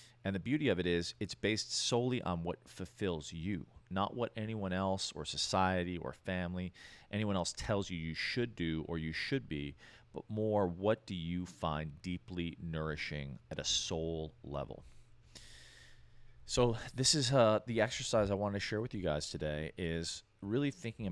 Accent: American